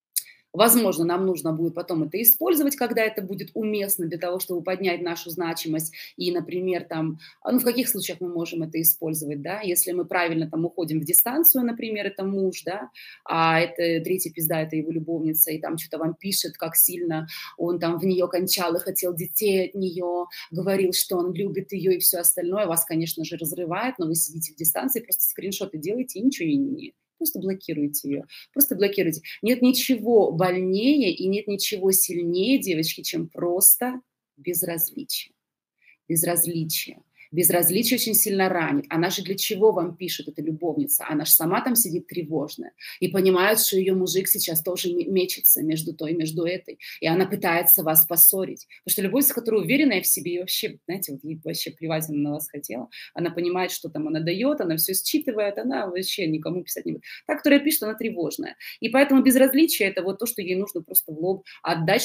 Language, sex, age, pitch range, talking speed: Russian, female, 20-39, 165-205 Hz, 185 wpm